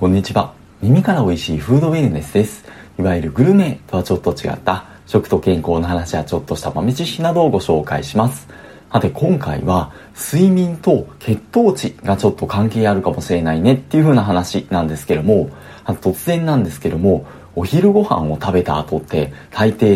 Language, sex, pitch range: Japanese, male, 90-130 Hz